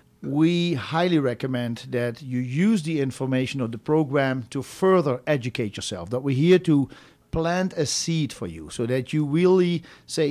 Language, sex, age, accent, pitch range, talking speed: English, male, 50-69, Dutch, 125-160 Hz, 170 wpm